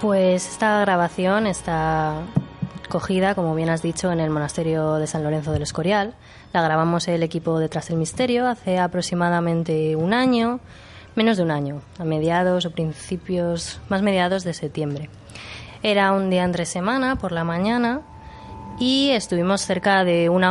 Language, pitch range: Spanish, 160-195 Hz